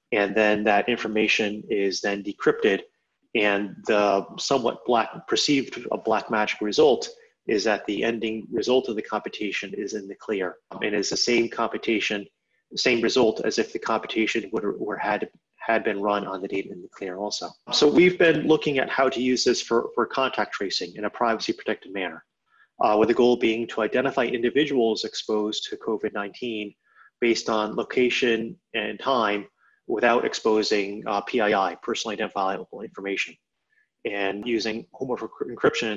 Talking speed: 165 wpm